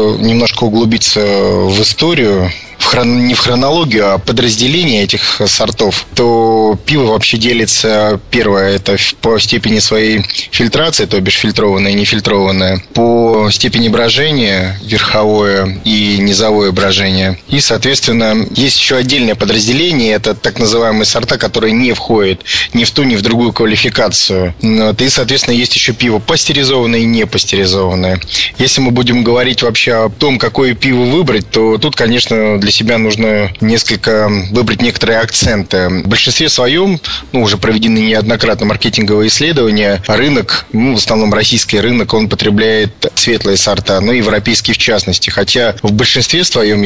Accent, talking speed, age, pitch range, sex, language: native, 145 wpm, 20-39, 105-120 Hz, male, Russian